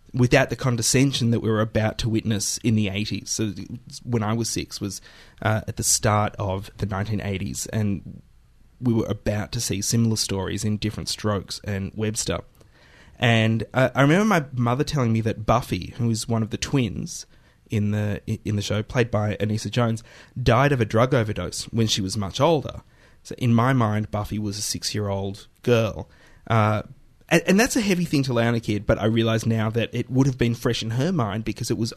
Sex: male